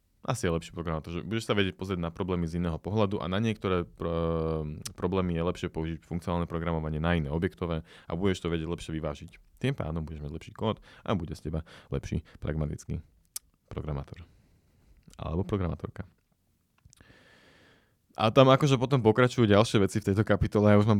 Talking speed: 170 wpm